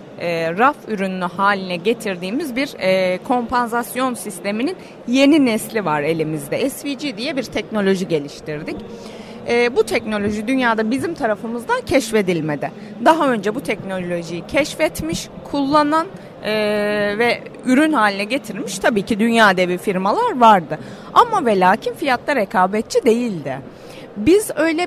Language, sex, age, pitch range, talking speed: Turkish, female, 30-49, 195-265 Hz, 120 wpm